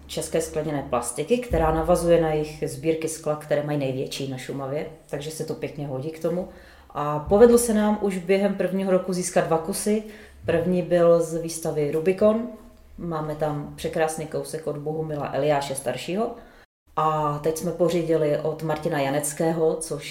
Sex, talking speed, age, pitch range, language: female, 160 wpm, 30-49, 155-185 Hz, Czech